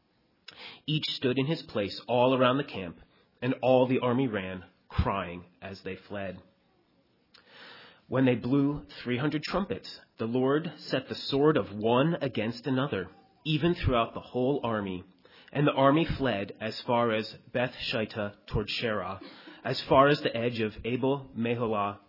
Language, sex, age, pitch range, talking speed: English, male, 30-49, 110-150 Hz, 150 wpm